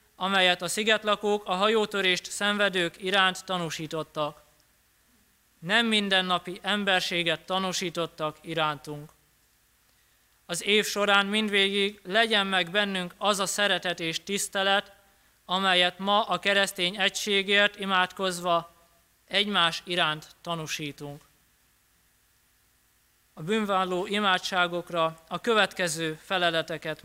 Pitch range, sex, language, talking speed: 170-200 Hz, male, Hungarian, 90 wpm